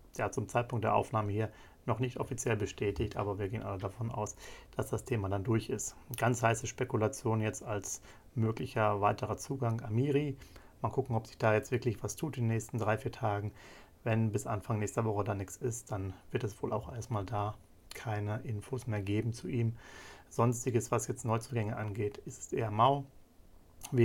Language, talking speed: German, 190 wpm